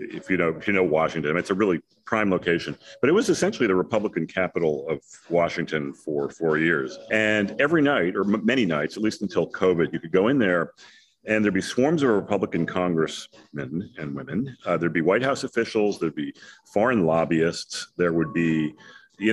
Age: 40-59